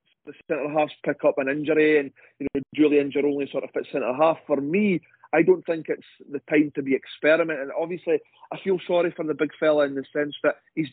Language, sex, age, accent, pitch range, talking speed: English, male, 40-59, British, 145-170 Hz, 225 wpm